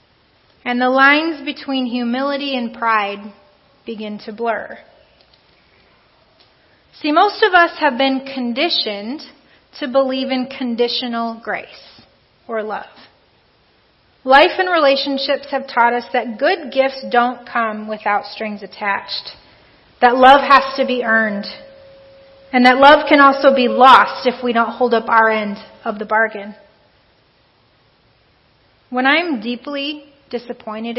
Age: 30-49